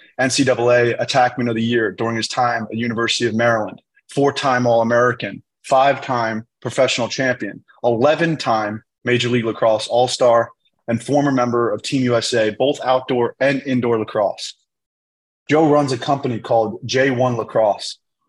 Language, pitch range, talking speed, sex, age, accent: English, 115-135 Hz, 130 wpm, male, 30-49, American